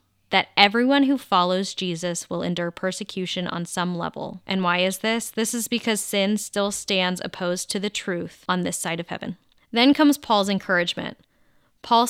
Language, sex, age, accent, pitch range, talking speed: English, female, 10-29, American, 175-220 Hz, 175 wpm